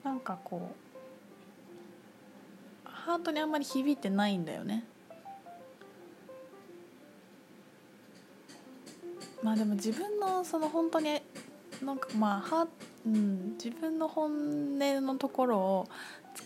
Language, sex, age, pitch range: Japanese, female, 20-39, 195-280 Hz